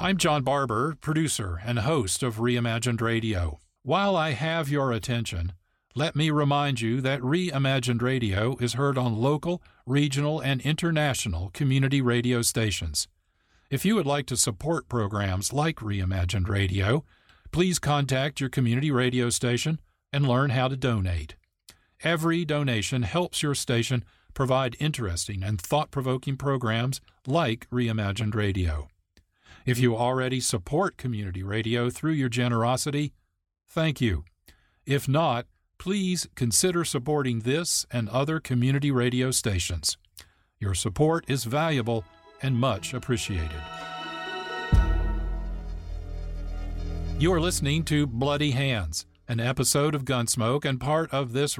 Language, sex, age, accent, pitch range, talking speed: English, male, 50-69, American, 100-145 Hz, 125 wpm